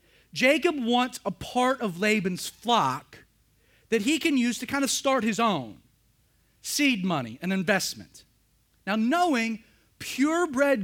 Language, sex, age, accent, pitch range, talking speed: English, male, 30-49, American, 170-255 Hz, 135 wpm